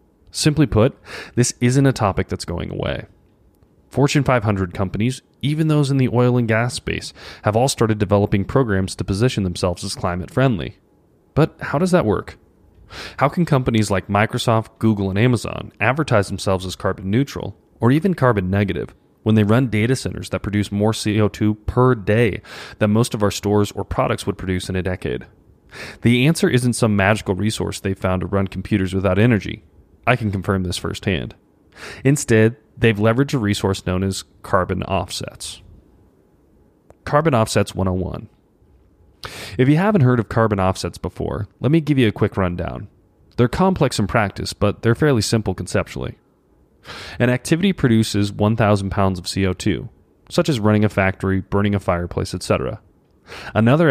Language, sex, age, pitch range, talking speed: English, male, 30-49, 95-120 Hz, 160 wpm